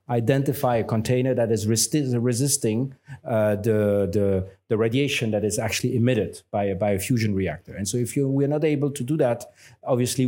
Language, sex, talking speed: English, male, 180 wpm